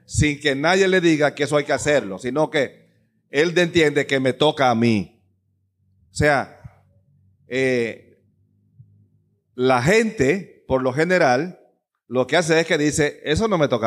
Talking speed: 160 wpm